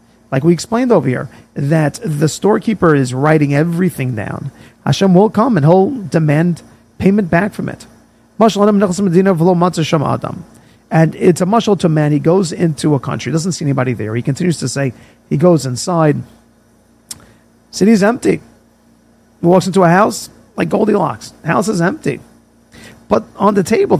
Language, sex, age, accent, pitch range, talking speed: English, male, 40-59, American, 145-210 Hz, 150 wpm